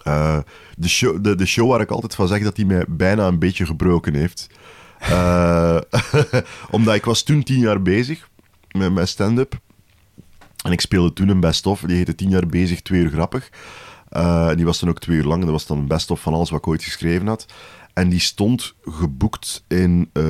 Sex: male